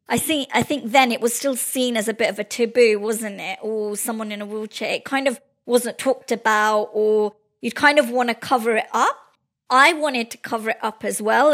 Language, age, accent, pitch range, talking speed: English, 20-39, British, 220-265 Hz, 230 wpm